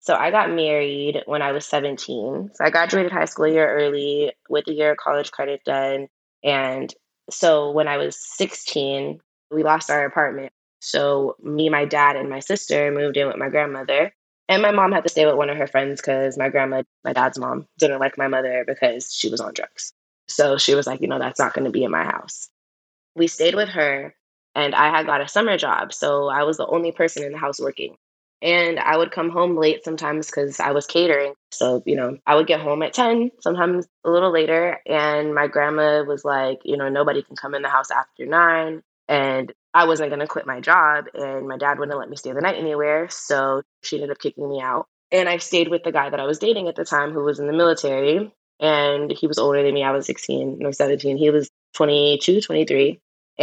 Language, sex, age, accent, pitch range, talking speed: English, female, 20-39, American, 140-160 Hz, 230 wpm